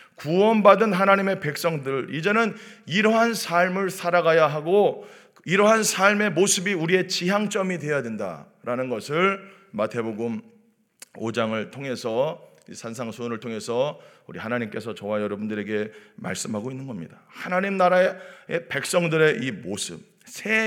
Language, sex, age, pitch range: Korean, male, 40-59, 120-185 Hz